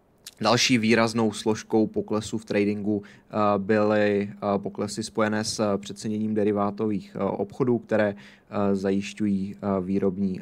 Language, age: Czech, 20-39